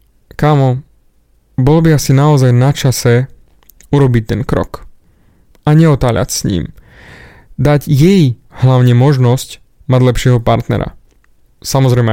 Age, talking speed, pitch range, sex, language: 20-39, 110 wpm, 125-155 Hz, male, Slovak